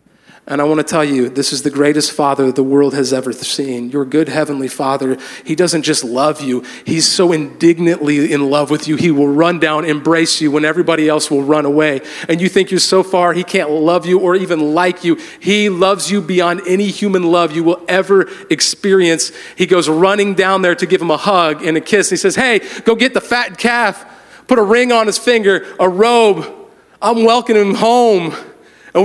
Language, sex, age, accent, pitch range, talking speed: English, male, 40-59, American, 175-230 Hz, 215 wpm